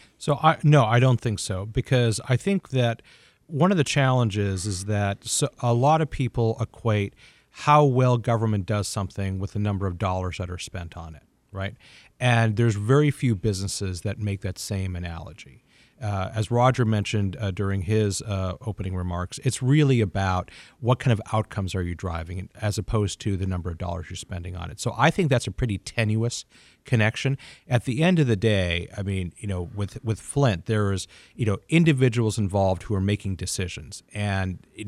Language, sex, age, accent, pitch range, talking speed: English, male, 40-59, American, 95-125 Hz, 195 wpm